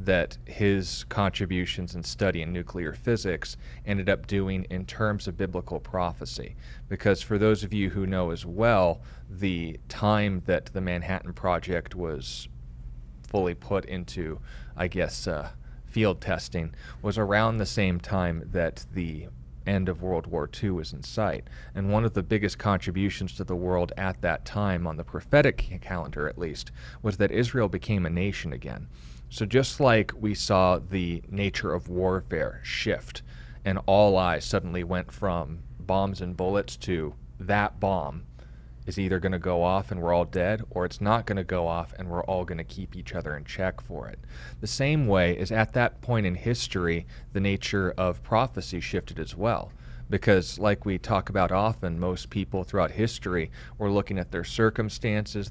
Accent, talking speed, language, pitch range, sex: American, 175 wpm, English, 85-100 Hz, male